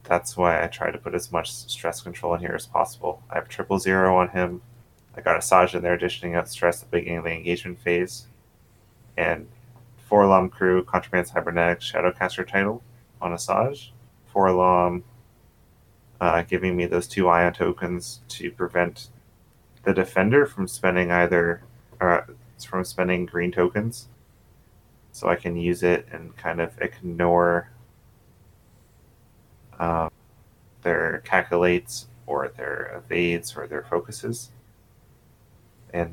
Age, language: 30-49, English